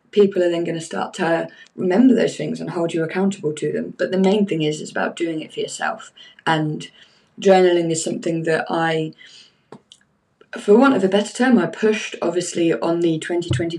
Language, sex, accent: English, female, British